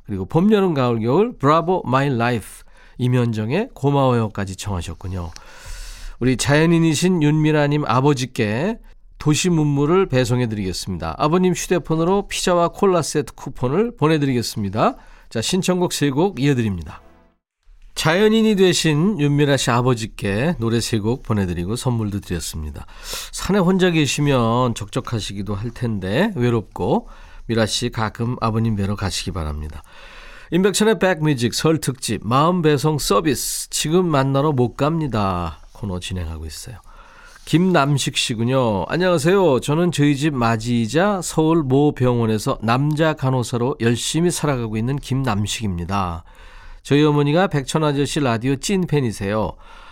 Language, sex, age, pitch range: Korean, male, 40-59, 110-160 Hz